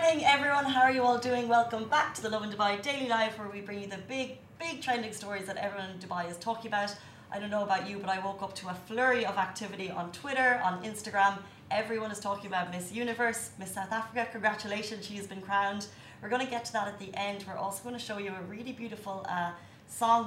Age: 30-49